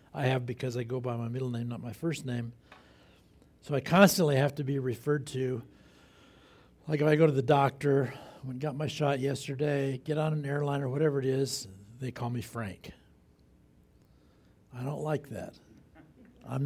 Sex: male